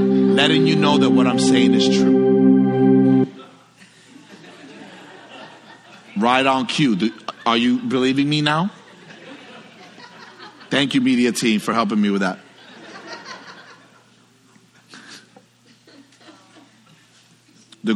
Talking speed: 90 wpm